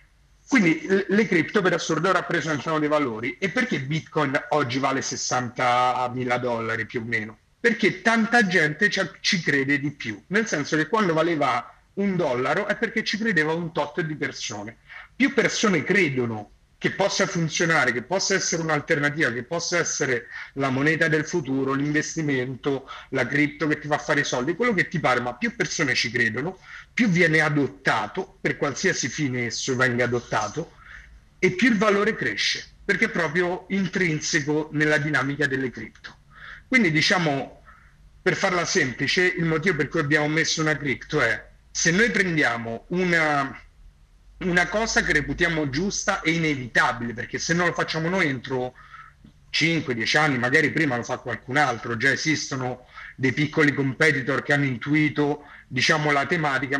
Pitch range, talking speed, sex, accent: 130-175 Hz, 155 wpm, male, native